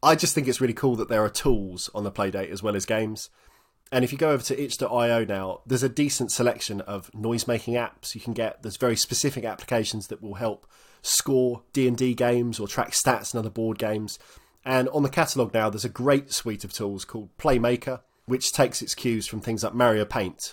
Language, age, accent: English, 20-39, British